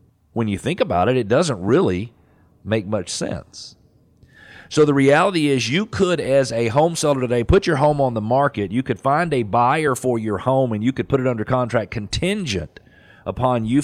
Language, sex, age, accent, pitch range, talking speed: English, male, 40-59, American, 100-130 Hz, 200 wpm